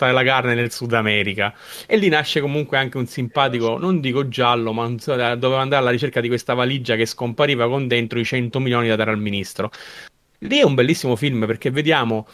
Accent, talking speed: native, 205 wpm